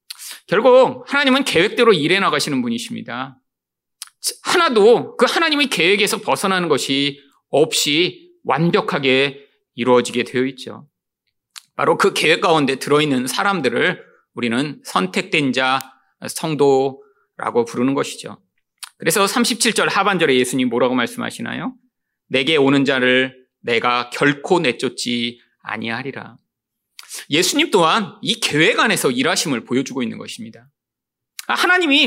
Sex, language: male, Korean